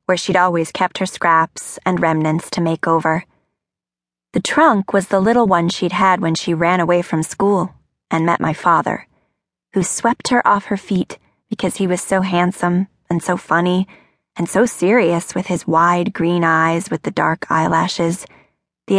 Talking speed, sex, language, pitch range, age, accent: 175 wpm, female, English, 165-210 Hz, 20-39, American